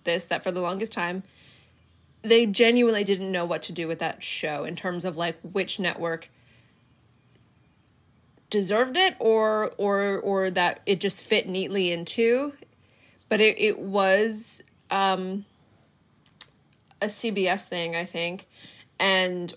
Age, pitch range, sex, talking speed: 20-39, 175-215 Hz, female, 135 wpm